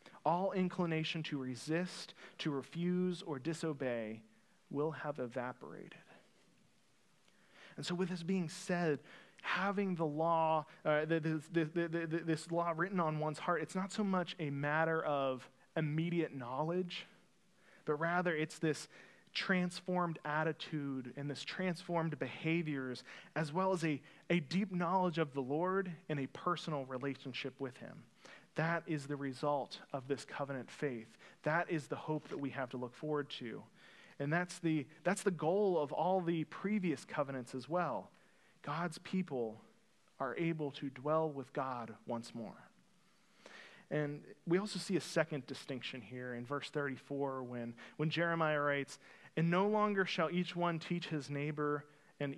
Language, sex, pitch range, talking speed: English, male, 140-175 Hz, 150 wpm